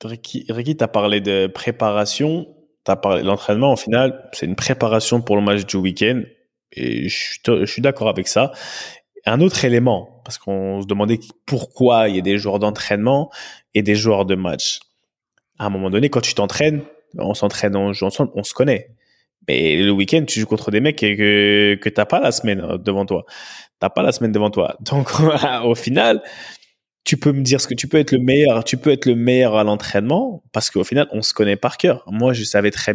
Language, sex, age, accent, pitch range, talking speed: French, male, 20-39, French, 105-135 Hz, 215 wpm